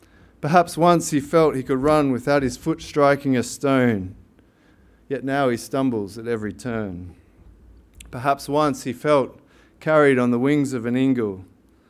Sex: male